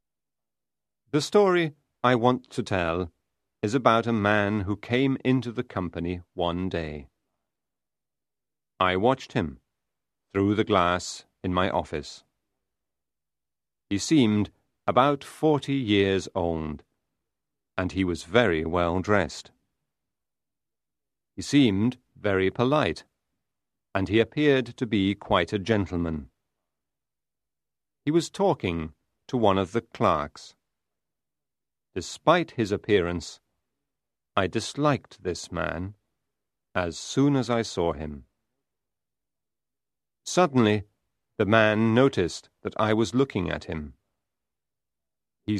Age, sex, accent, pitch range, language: 40-59, male, British, 90-125 Hz, Chinese